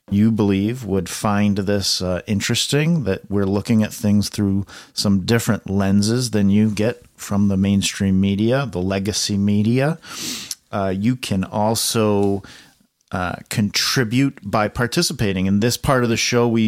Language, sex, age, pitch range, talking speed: English, male, 40-59, 100-120 Hz, 150 wpm